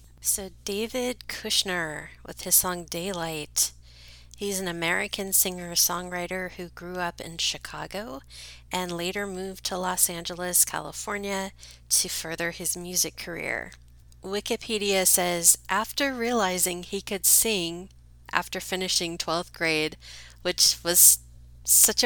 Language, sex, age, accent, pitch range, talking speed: English, female, 30-49, American, 160-195 Hz, 115 wpm